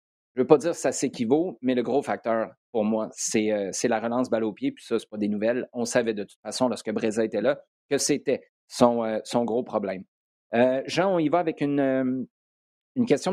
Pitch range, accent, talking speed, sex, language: 120-150 Hz, Canadian, 250 wpm, male, French